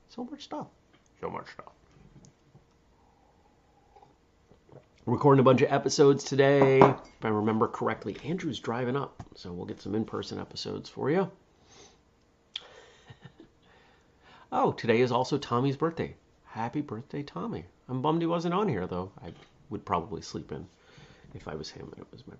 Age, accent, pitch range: 30-49, American, 95-135 Hz